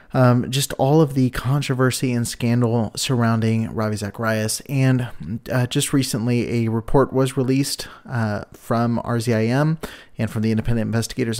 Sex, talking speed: male, 140 wpm